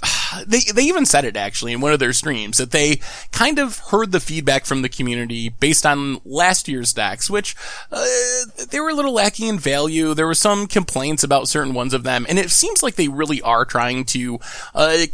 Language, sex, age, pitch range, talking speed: English, male, 20-39, 140-210 Hz, 215 wpm